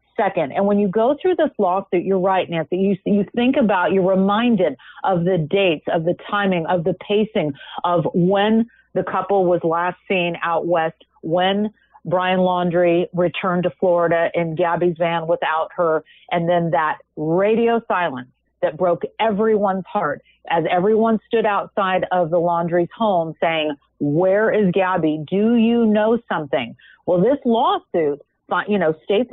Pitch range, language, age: 170-205 Hz, English, 40-59